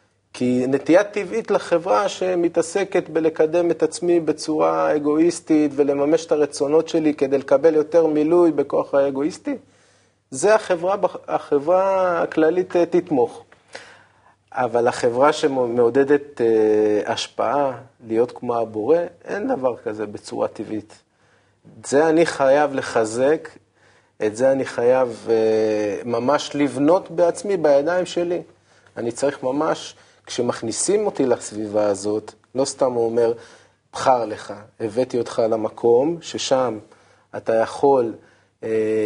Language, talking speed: Hebrew, 110 wpm